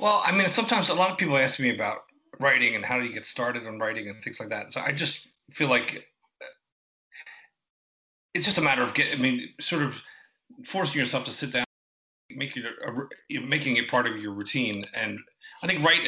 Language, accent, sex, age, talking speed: English, American, male, 30-49, 200 wpm